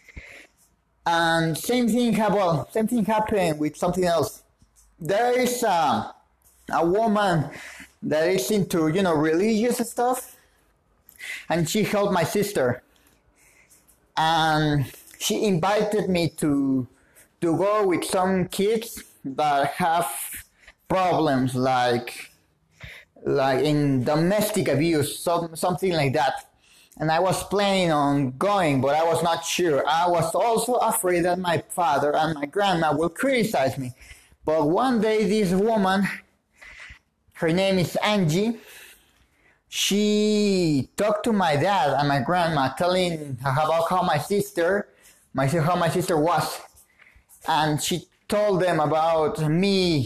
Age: 30-49